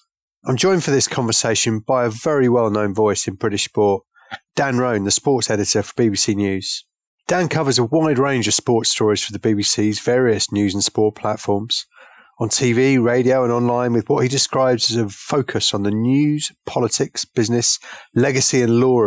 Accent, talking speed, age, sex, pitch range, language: British, 180 wpm, 30-49, male, 110-135 Hz, English